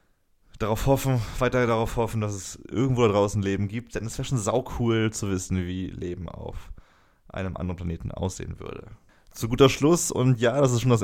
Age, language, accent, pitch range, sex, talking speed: 20-39, German, German, 95-120 Hz, male, 195 wpm